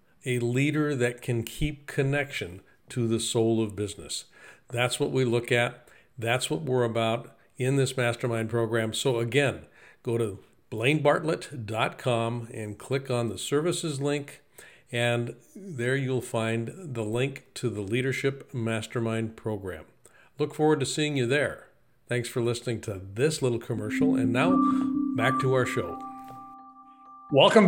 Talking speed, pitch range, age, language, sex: 145 wpm, 120-155 Hz, 50-69, English, male